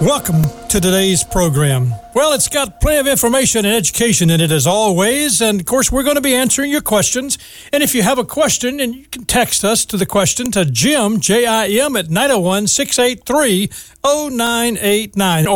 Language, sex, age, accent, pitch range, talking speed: English, male, 60-79, American, 185-255 Hz, 190 wpm